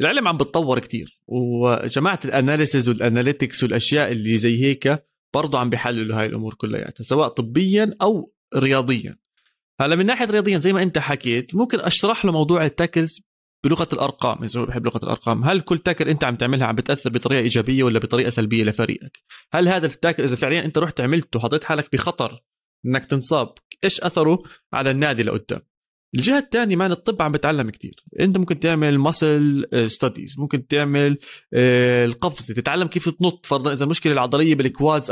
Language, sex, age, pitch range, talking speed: Arabic, male, 30-49, 125-165 Hz, 165 wpm